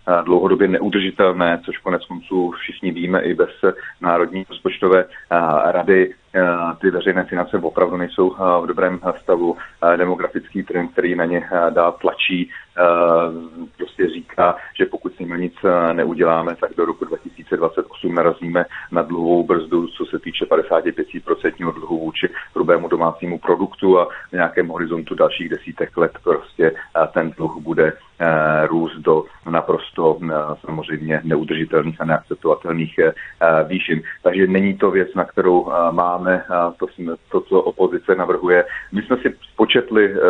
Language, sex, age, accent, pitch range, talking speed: Czech, male, 40-59, native, 85-95 Hz, 125 wpm